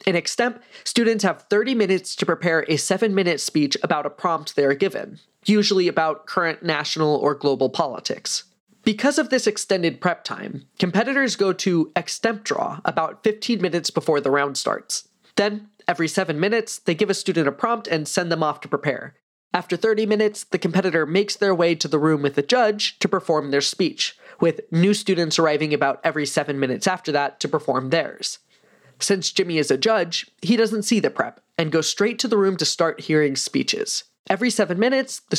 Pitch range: 155-210 Hz